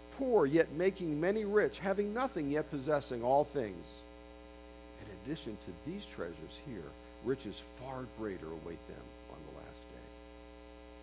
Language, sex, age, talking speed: English, male, 50-69, 140 wpm